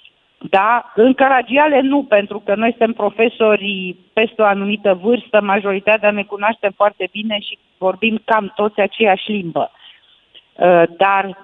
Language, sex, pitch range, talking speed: Romanian, female, 180-215 Hz, 130 wpm